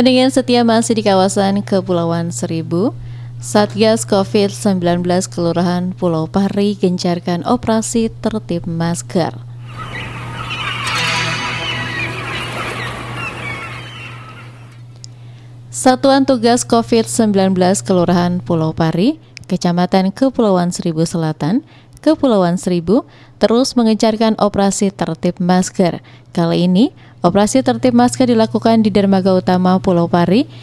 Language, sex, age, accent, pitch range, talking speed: Indonesian, female, 20-39, native, 165-225 Hz, 85 wpm